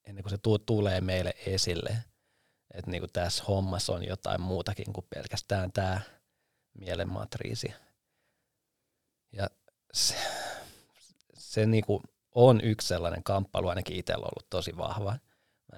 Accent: native